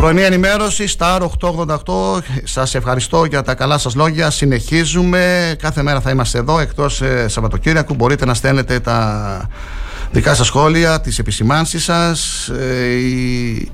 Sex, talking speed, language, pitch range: male, 130 wpm, Greek, 115-150 Hz